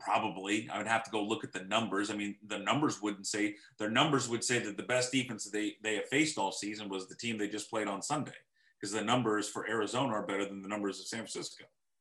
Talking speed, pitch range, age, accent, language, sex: 255 wpm, 100-125 Hz, 30-49, American, English, male